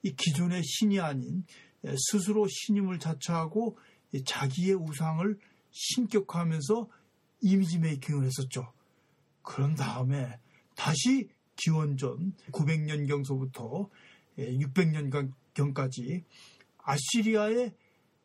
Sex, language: male, Korean